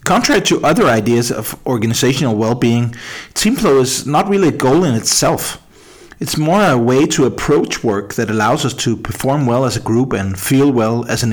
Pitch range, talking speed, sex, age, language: 110-145 Hz, 190 wpm, male, 40-59, Danish